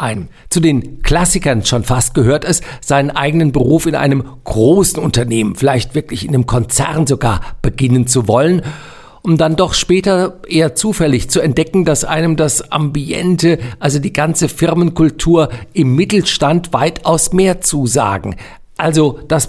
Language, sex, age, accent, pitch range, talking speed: German, male, 50-69, German, 130-170 Hz, 140 wpm